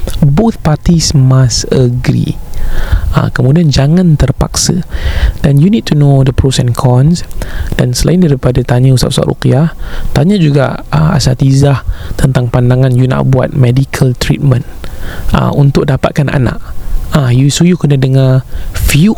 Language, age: Malay, 20-39